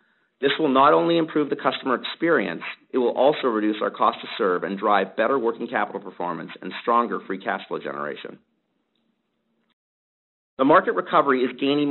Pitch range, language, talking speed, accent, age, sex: 105-135 Hz, English, 165 wpm, American, 50-69, male